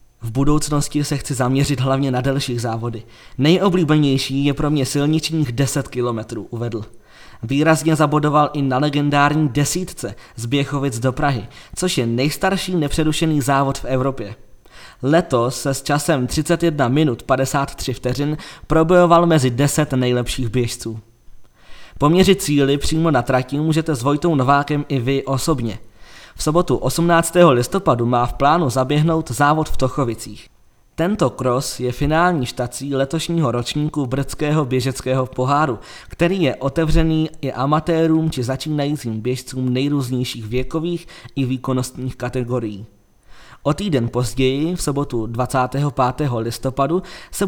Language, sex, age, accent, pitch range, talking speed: Czech, male, 20-39, native, 125-155 Hz, 130 wpm